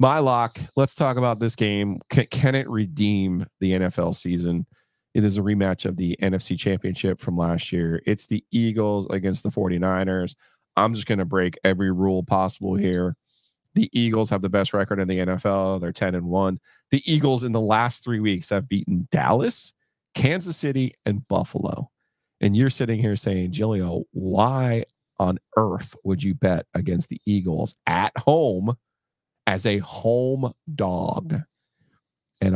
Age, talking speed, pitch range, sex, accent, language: 30-49, 165 wpm, 95-115 Hz, male, American, English